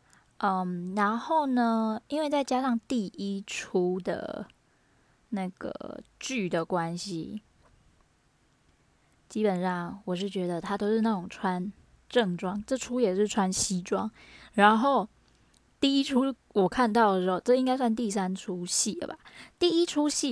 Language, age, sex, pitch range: Chinese, 10-29, female, 195-255 Hz